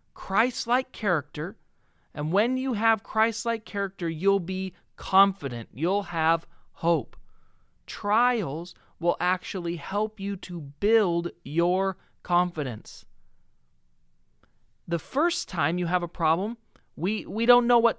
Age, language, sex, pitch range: 40-59, English, male, 185-235 Hz